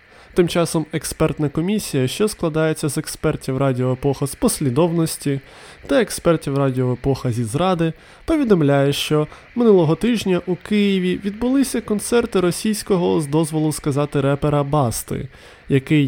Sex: male